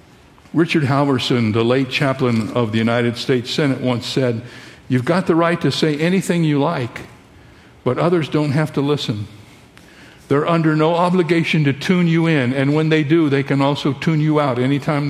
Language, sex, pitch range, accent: English, male, 115-150 Hz, American